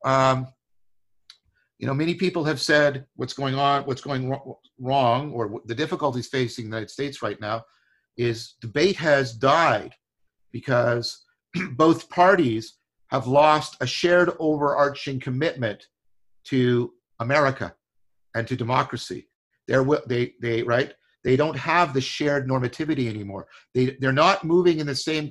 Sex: male